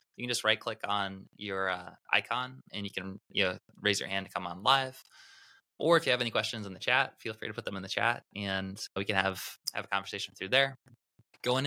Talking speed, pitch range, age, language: 245 wpm, 95-110 Hz, 20-39, English